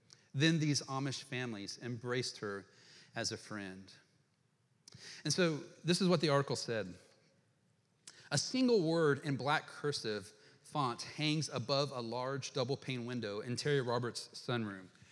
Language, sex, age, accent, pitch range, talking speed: English, male, 40-59, American, 125-150 Hz, 135 wpm